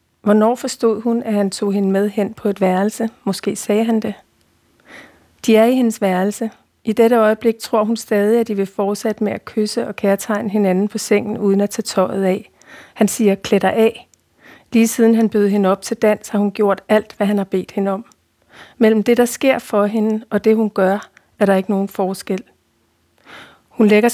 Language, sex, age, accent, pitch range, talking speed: Danish, female, 40-59, native, 200-225 Hz, 205 wpm